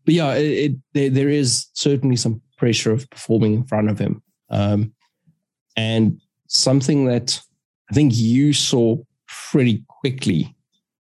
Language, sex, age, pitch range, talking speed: English, male, 20-39, 105-130 Hz, 140 wpm